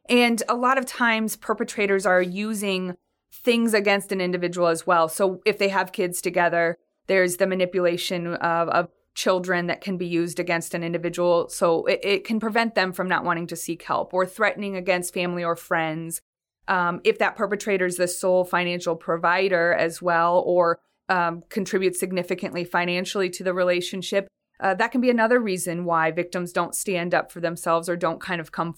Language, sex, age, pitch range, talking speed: English, female, 20-39, 170-195 Hz, 185 wpm